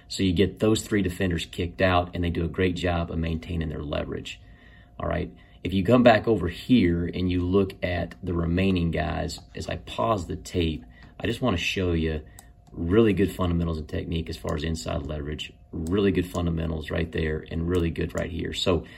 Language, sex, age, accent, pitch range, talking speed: English, male, 30-49, American, 80-95 Hz, 200 wpm